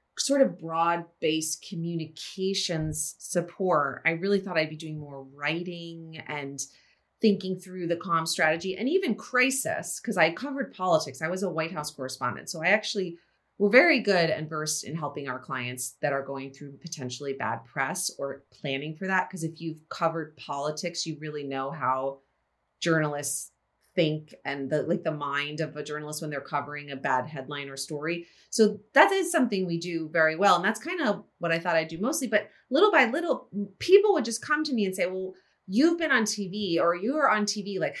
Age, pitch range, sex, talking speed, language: 30-49, 155-210 Hz, female, 195 wpm, English